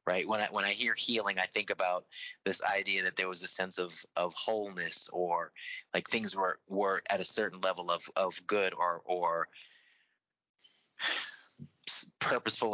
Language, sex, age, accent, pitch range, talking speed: English, male, 30-49, American, 90-105 Hz, 165 wpm